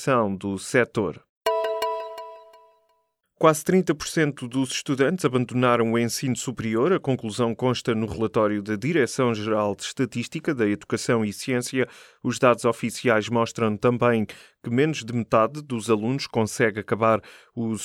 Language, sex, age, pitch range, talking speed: Portuguese, male, 20-39, 110-125 Hz, 130 wpm